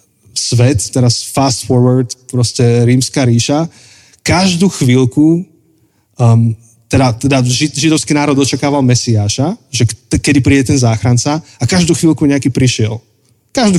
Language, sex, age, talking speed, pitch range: Slovak, male, 20-39, 120 wpm, 115-140 Hz